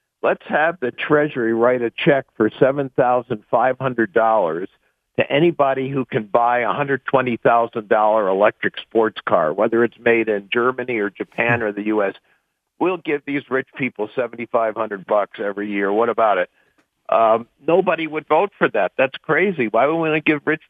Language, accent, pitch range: English, American, 115-135 Hz